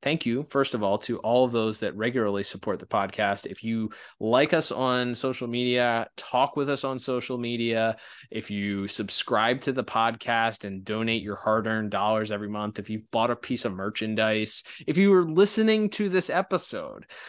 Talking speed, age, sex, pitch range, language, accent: 185 wpm, 20-39, male, 110-130 Hz, English, American